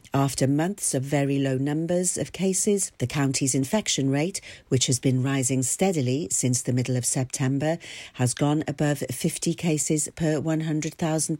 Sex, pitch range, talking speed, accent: female, 140-180 Hz, 155 wpm, British